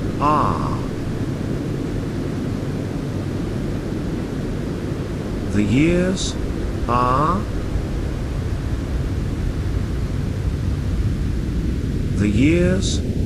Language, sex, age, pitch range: English, male, 50-69, 95-125 Hz